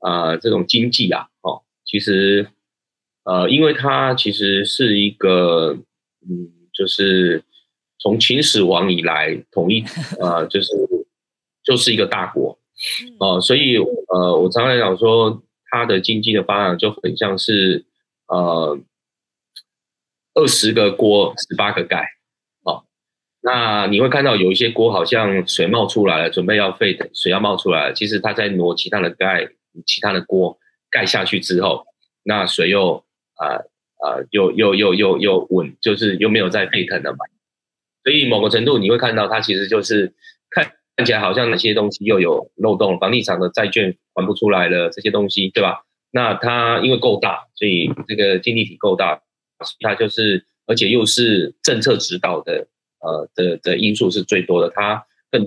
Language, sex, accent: Chinese, male, native